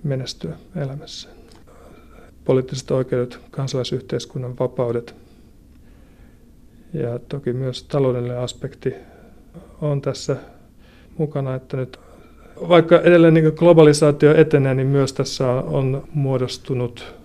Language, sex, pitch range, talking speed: Finnish, male, 120-140 Hz, 85 wpm